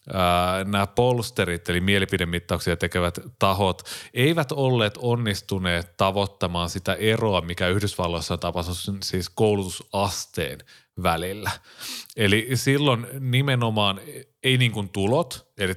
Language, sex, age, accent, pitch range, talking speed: Finnish, male, 30-49, native, 90-110 Hz, 105 wpm